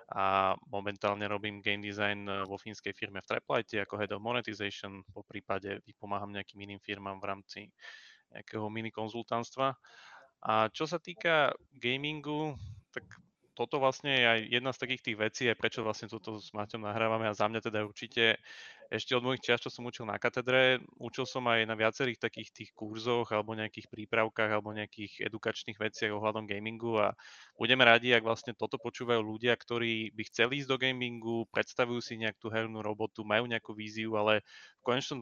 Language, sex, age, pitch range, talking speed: Slovak, male, 20-39, 105-120 Hz, 175 wpm